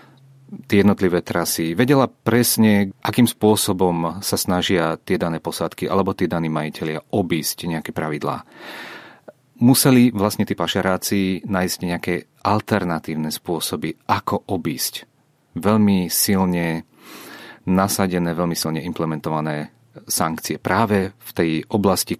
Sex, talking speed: male, 110 wpm